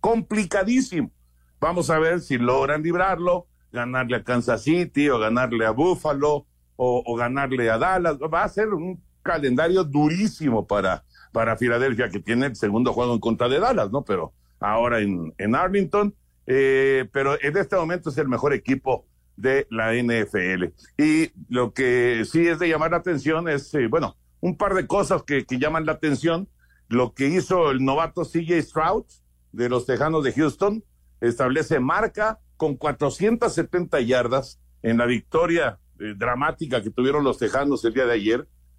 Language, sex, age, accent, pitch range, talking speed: Spanish, male, 60-79, Mexican, 115-165 Hz, 165 wpm